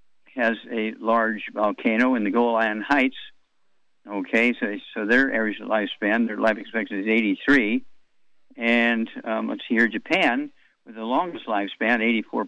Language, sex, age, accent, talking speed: English, male, 50-69, American, 140 wpm